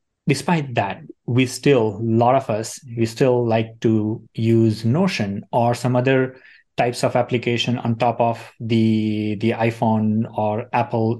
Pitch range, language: 115-135 Hz, English